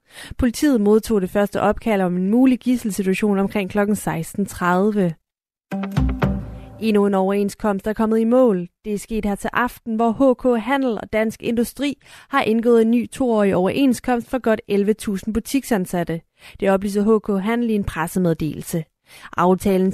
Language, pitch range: Danish, 190-230 Hz